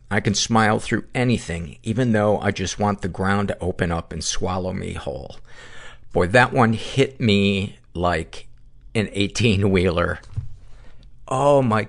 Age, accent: 50-69, American